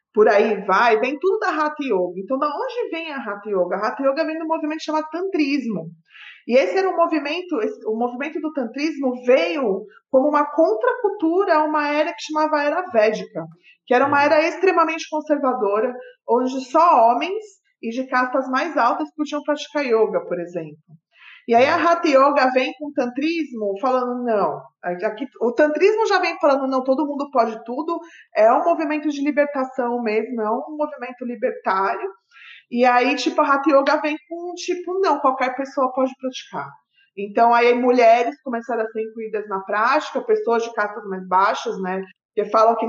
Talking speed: 180 wpm